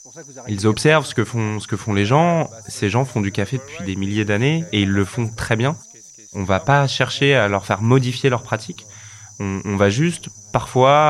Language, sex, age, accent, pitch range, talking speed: French, male, 20-39, French, 100-120 Hz, 220 wpm